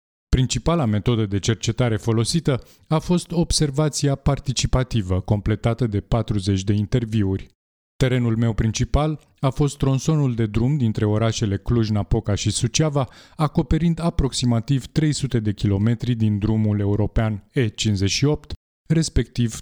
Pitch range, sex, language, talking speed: 105-135 Hz, male, Romanian, 115 wpm